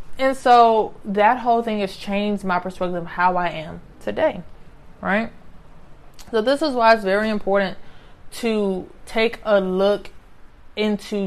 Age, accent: 20-39, American